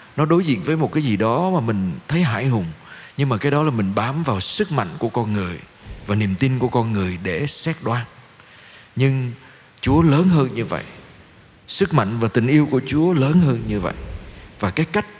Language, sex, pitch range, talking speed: Vietnamese, male, 110-150 Hz, 215 wpm